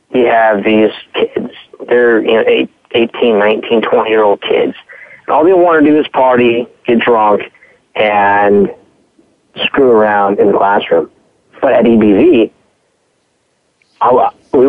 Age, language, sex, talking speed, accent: 30-49, English, male, 115 wpm, American